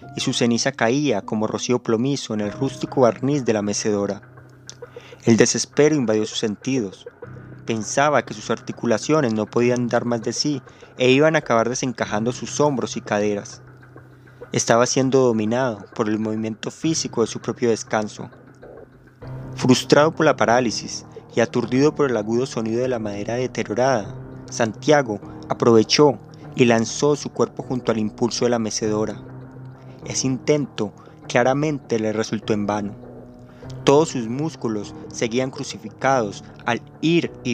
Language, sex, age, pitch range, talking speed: Spanish, male, 30-49, 110-130 Hz, 145 wpm